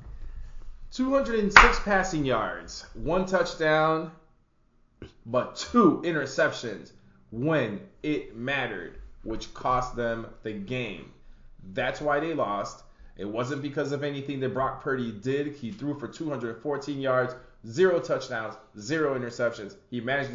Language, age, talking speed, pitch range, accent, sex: English, 20-39, 120 wpm, 125-185 Hz, American, male